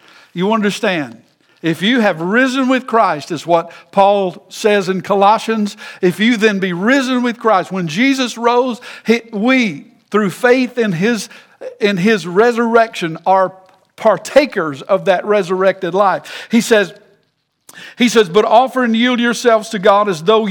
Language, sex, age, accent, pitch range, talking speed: English, male, 60-79, American, 175-225 Hz, 150 wpm